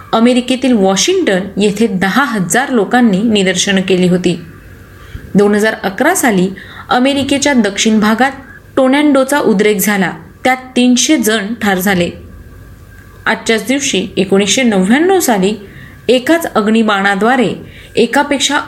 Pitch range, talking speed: 195-255 Hz, 100 wpm